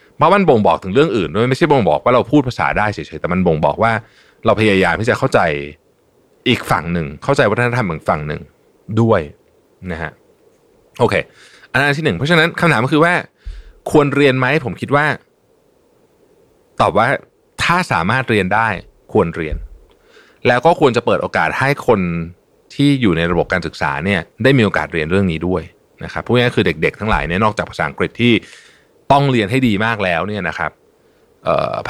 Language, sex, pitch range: Thai, male, 90-150 Hz